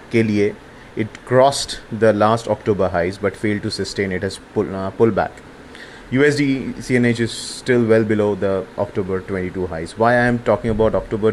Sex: male